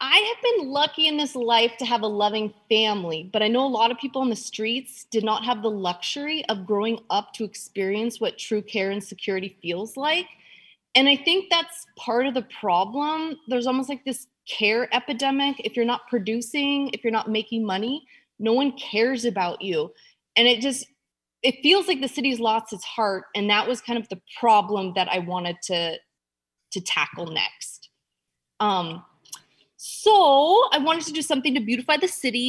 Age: 20-39